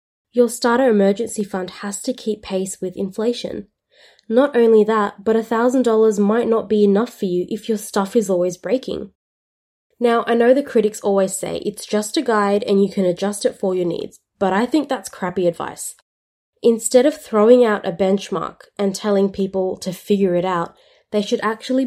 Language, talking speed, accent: English, 185 wpm, Australian